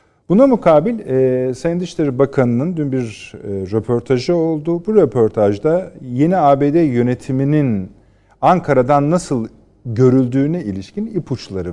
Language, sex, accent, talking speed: Turkish, male, native, 95 wpm